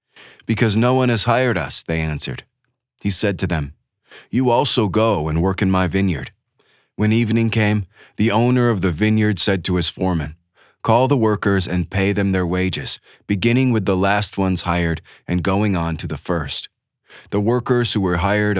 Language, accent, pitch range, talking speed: English, American, 90-115 Hz, 185 wpm